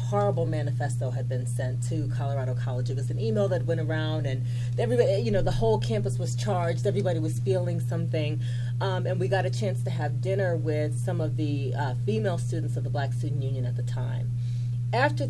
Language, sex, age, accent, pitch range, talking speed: English, female, 30-49, American, 120-125 Hz, 205 wpm